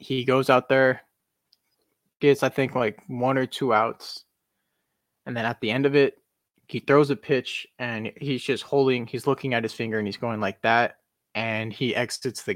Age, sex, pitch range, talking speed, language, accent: 20-39, male, 110-130 Hz, 195 wpm, English, American